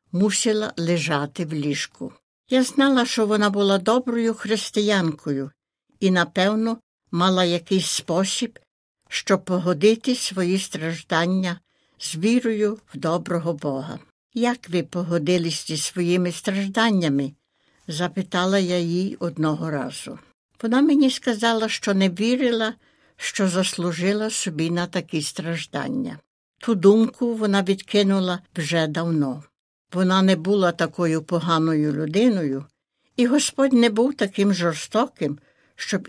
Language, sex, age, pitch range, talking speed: Ukrainian, female, 60-79, 170-215 Hz, 110 wpm